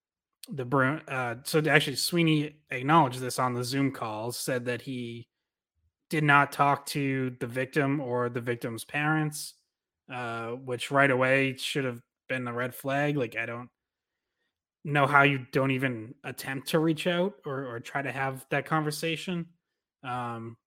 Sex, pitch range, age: male, 125-145 Hz, 20-39